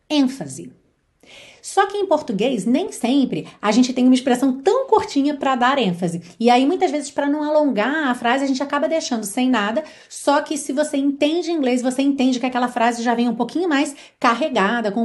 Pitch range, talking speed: 215-285 Hz, 200 wpm